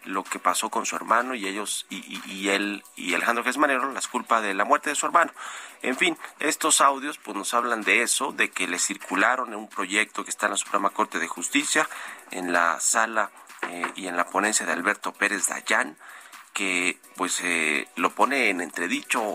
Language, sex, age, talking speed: Spanish, male, 40-59, 210 wpm